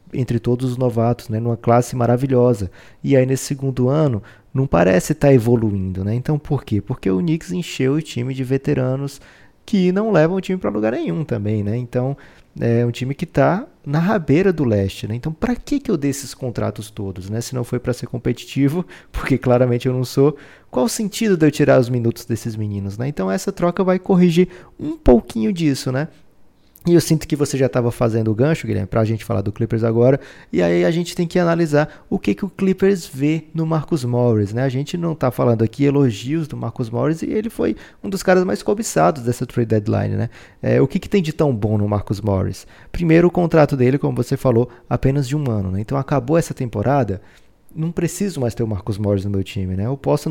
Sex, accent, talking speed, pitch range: male, Brazilian, 225 wpm, 115-155 Hz